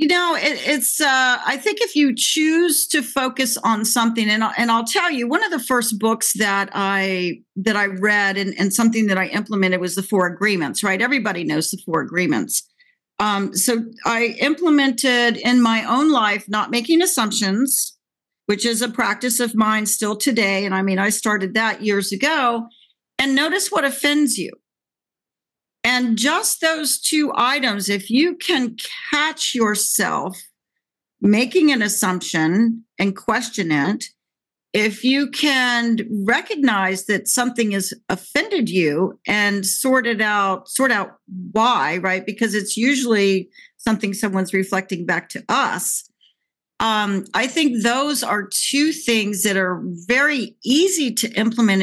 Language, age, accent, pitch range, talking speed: English, 50-69, American, 200-265 Hz, 155 wpm